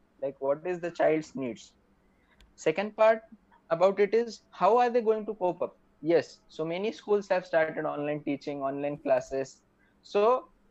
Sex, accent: male, native